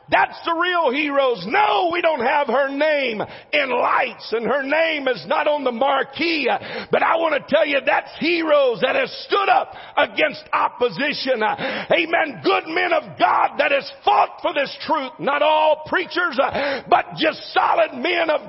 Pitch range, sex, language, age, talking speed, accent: 235-315 Hz, male, English, 50-69, 170 wpm, American